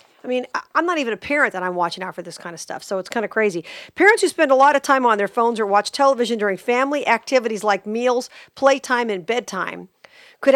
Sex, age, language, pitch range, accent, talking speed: female, 50-69, English, 210-275 Hz, American, 245 wpm